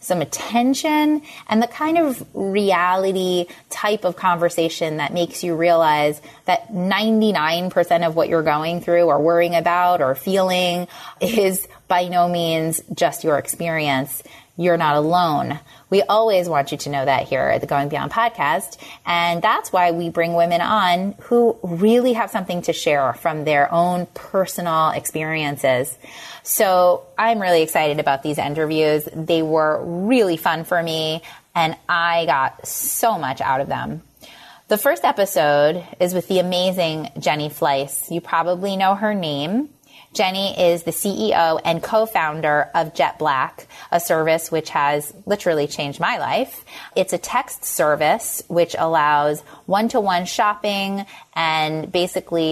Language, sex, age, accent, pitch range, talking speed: English, female, 30-49, American, 155-190 Hz, 145 wpm